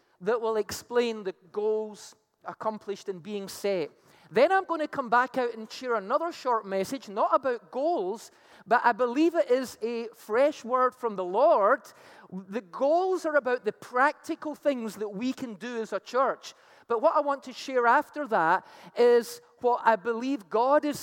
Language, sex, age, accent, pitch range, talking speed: English, male, 30-49, British, 205-290 Hz, 180 wpm